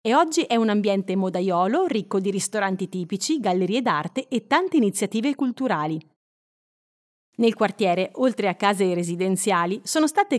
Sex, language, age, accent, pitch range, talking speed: female, Italian, 30-49, native, 190-255 Hz, 140 wpm